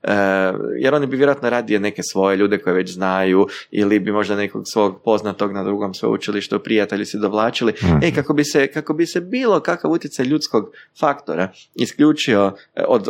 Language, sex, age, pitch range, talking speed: Croatian, male, 20-39, 105-155 Hz, 170 wpm